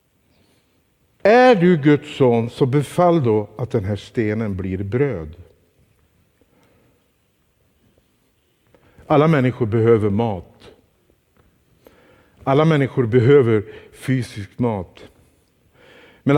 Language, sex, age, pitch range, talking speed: Swedish, male, 50-69, 140-195 Hz, 85 wpm